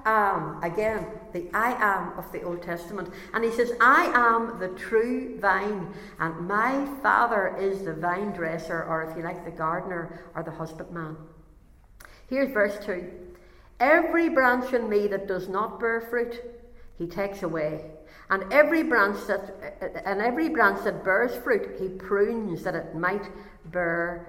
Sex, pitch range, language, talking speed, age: female, 180-215 Hz, English, 160 wpm, 60-79